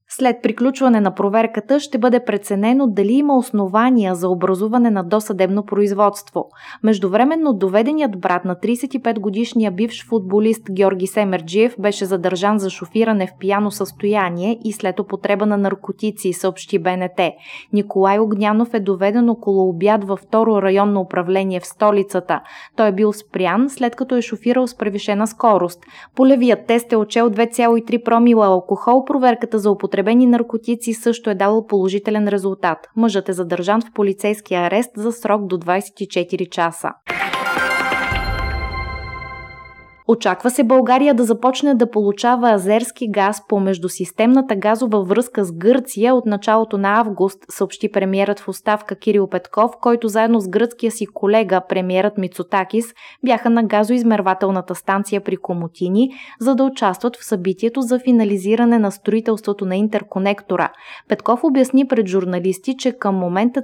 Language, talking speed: Bulgarian, 140 wpm